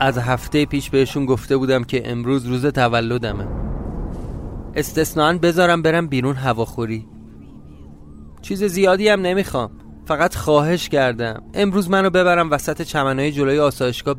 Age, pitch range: 30-49, 125-190 Hz